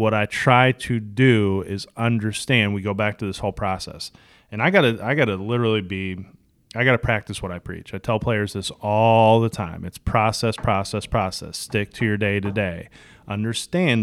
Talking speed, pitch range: 205 wpm, 100-125 Hz